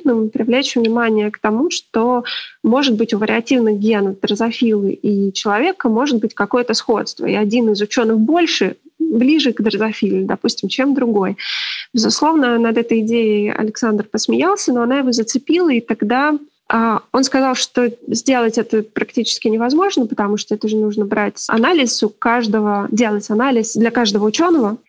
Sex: female